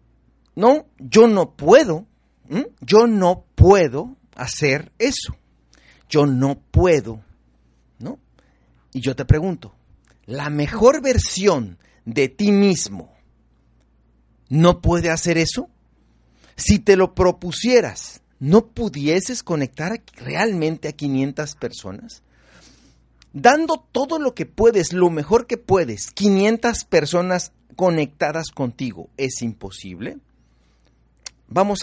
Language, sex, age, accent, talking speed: Spanish, male, 40-59, Mexican, 100 wpm